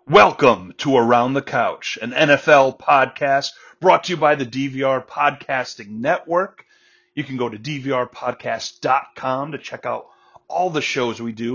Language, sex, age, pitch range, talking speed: English, male, 30-49, 120-155 Hz, 150 wpm